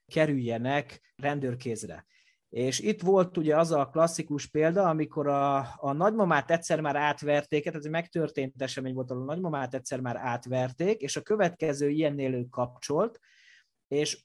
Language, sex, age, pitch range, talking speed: Hungarian, male, 30-49, 125-160 Hz, 140 wpm